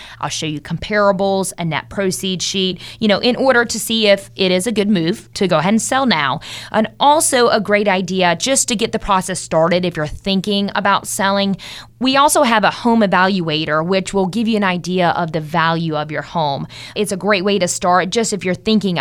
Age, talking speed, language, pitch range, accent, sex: 20-39, 220 wpm, English, 170-215 Hz, American, female